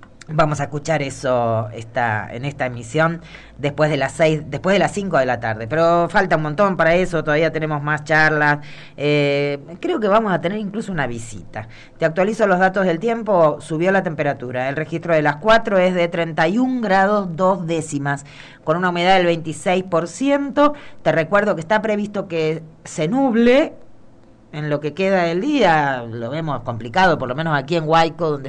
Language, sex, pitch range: Spanish, female, 145-180 Hz